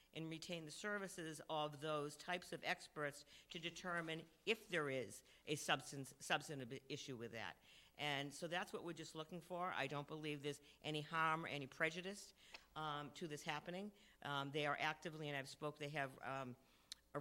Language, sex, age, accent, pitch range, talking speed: English, female, 50-69, American, 140-165 Hz, 180 wpm